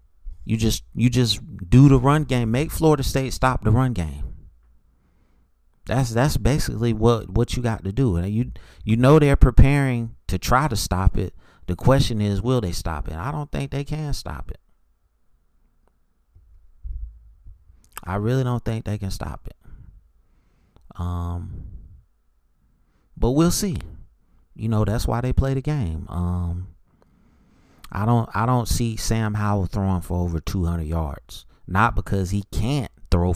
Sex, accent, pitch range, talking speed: male, American, 85-115 Hz, 155 wpm